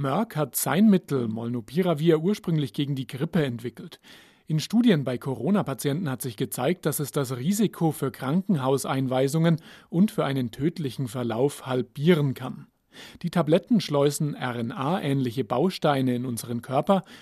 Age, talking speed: 40-59, 130 wpm